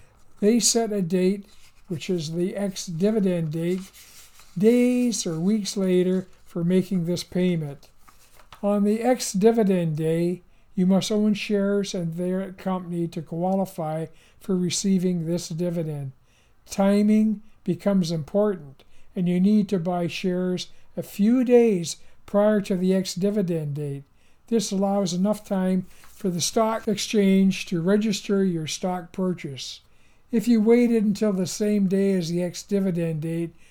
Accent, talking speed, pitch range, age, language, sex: American, 135 wpm, 170-205 Hz, 60-79, English, male